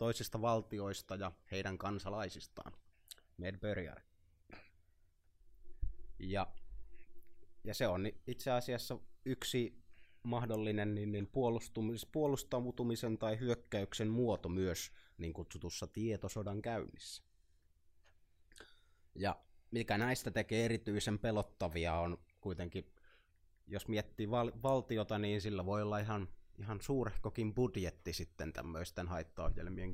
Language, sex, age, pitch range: Finnish, male, 30-49, 85-110 Hz